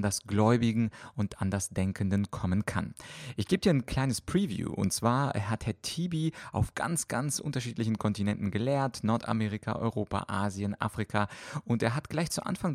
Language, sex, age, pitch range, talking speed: German, male, 30-49, 105-125 Hz, 165 wpm